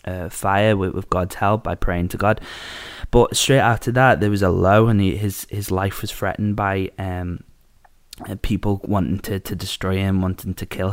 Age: 20-39